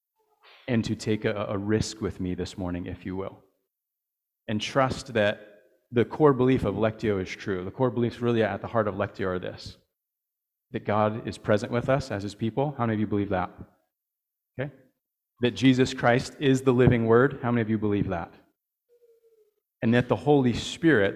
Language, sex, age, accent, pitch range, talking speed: English, male, 30-49, American, 100-125 Hz, 195 wpm